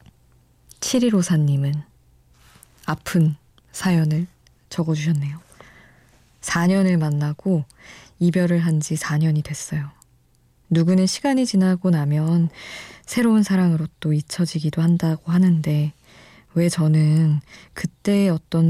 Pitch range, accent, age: 155-195 Hz, native, 20-39